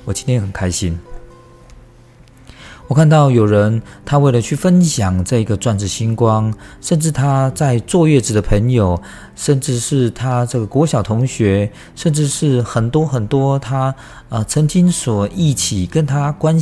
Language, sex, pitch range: Chinese, male, 100-145 Hz